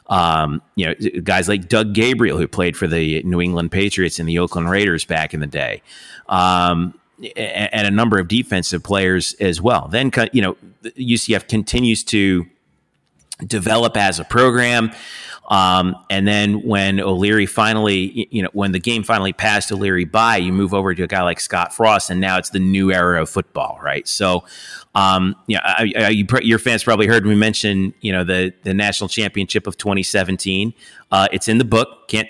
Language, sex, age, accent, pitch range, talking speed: English, male, 30-49, American, 95-115 Hz, 190 wpm